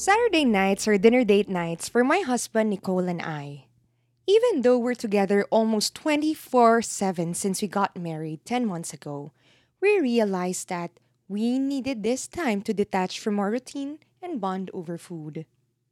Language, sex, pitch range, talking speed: English, female, 170-245 Hz, 155 wpm